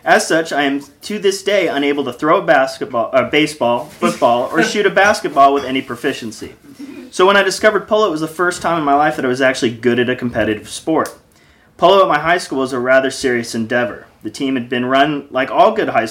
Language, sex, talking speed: English, male, 235 wpm